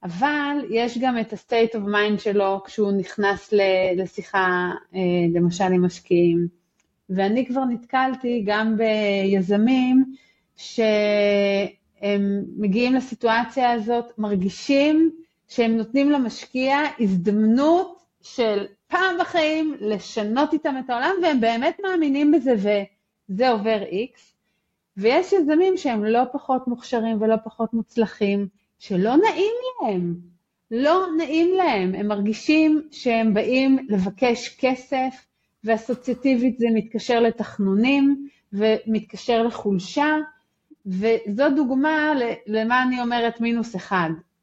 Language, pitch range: Hebrew, 205-265 Hz